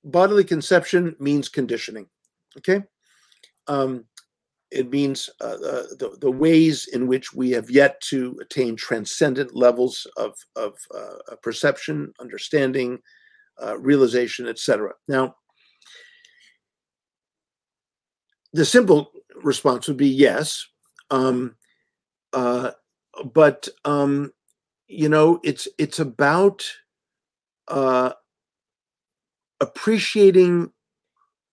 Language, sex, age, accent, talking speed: English, male, 50-69, American, 90 wpm